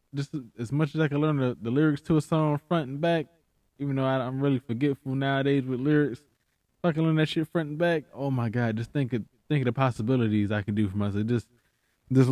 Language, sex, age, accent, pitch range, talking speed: English, male, 20-39, American, 115-155 Hz, 230 wpm